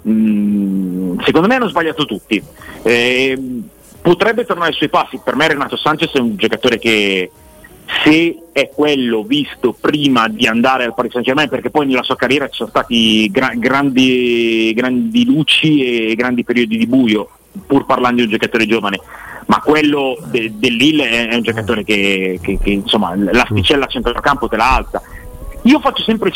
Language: Italian